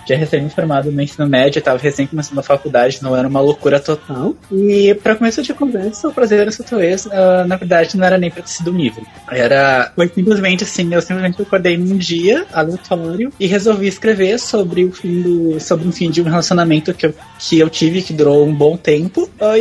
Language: Portuguese